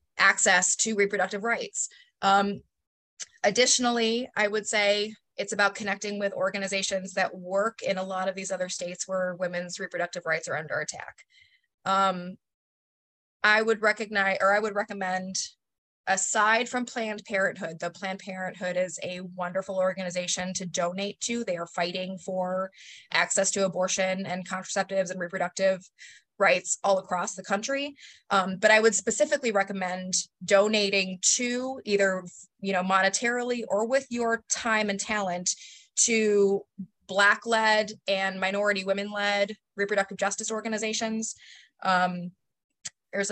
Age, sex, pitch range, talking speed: 20-39, female, 185-220 Hz, 135 wpm